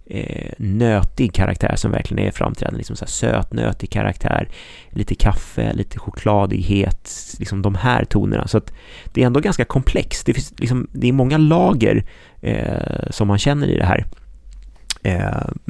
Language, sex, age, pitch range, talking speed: Swedish, male, 30-49, 100-125 Hz, 160 wpm